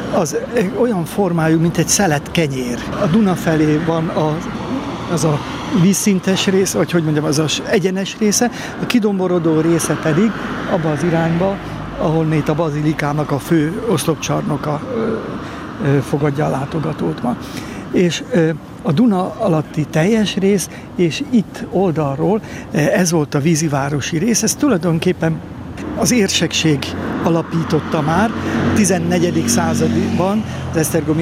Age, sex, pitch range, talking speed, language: 60-79, male, 155-195 Hz, 130 wpm, Hungarian